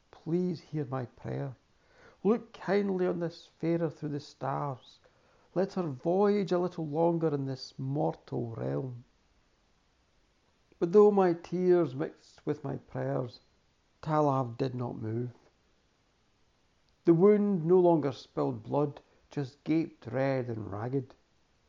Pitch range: 125-170 Hz